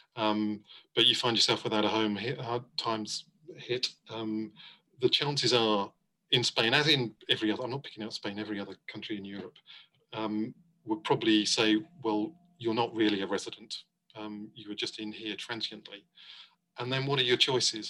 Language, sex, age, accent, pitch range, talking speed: English, male, 40-59, British, 105-130 Hz, 185 wpm